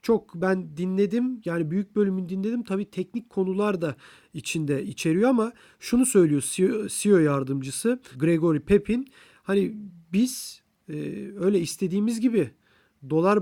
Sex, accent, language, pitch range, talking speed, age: male, native, Turkish, 160-205 Hz, 115 wpm, 40-59